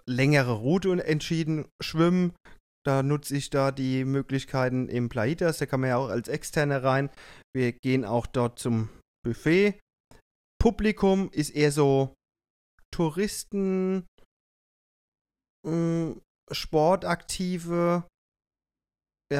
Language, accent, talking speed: German, German, 100 wpm